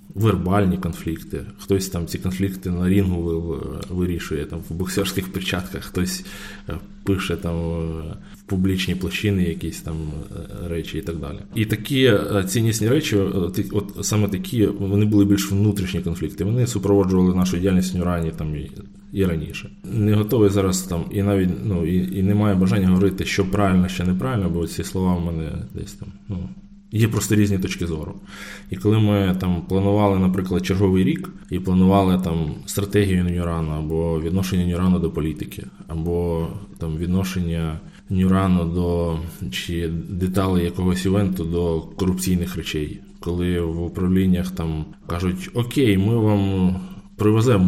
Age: 20-39